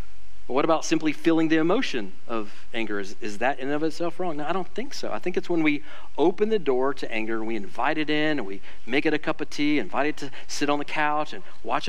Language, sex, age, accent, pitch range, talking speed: English, male, 40-59, American, 105-140 Hz, 265 wpm